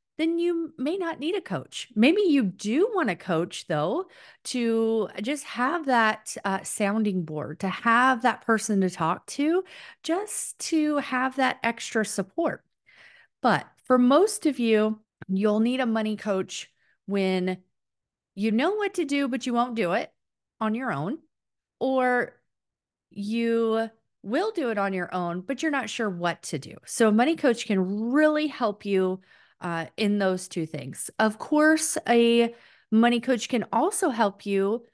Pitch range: 200-280 Hz